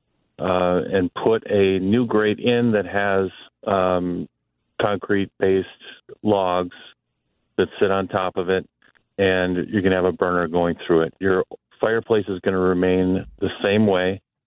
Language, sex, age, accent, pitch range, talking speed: English, male, 40-59, American, 90-100 Hz, 155 wpm